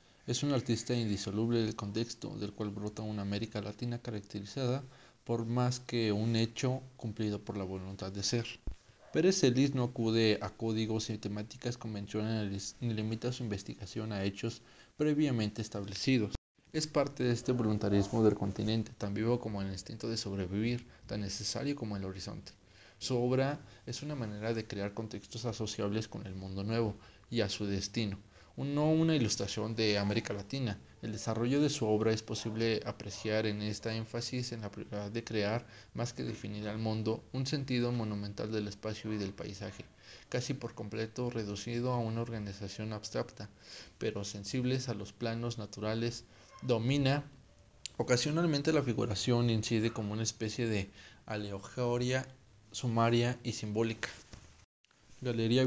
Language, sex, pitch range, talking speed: Spanish, male, 105-120 Hz, 150 wpm